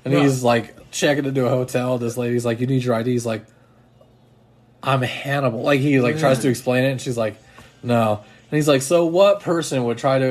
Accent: American